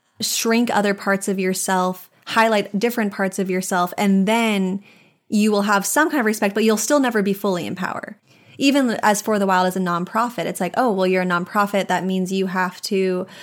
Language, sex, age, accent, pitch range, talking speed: English, female, 20-39, American, 185-220 Hz, 210 wpm